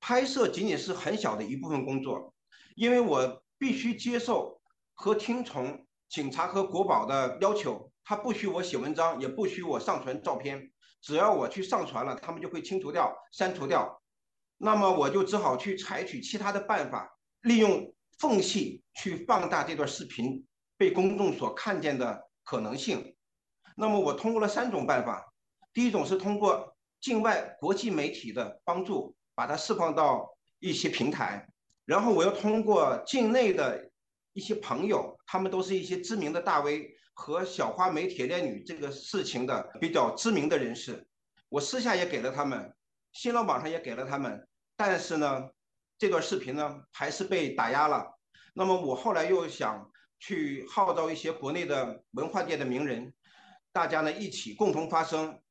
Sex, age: male, 50-69